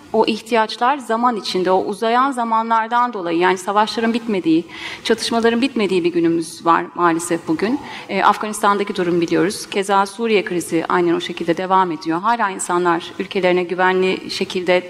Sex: female